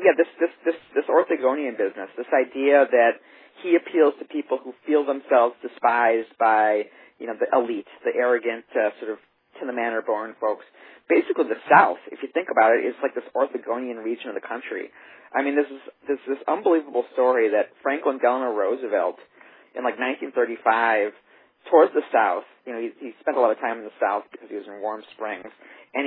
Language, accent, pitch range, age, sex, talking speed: English, American, 120-170 Hz, 40-59, male, 200 wpm